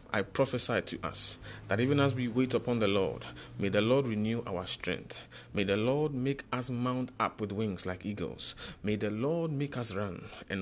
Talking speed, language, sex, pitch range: 205 wpm, English, male, 90-115 Hz